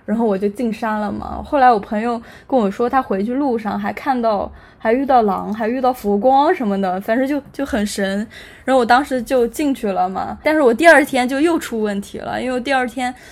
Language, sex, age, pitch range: Chinese, female, 10-29, 215-260 Hz